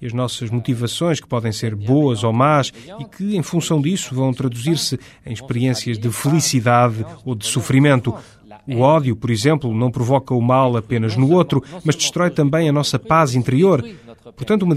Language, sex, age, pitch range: Portuguese, male, 30-49, 115-150 Hz